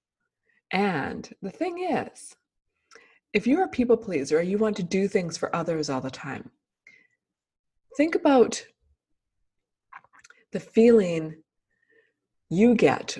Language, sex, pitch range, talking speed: English, female, 190-265 Hz, 115 wpm